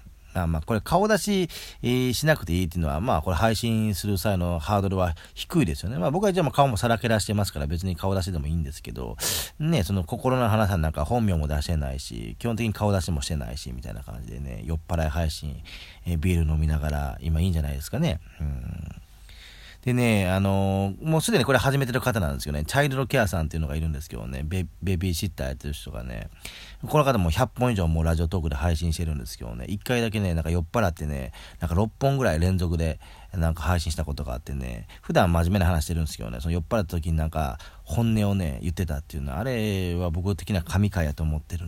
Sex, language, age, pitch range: male, Japanese, 40-59, 80-105 Hz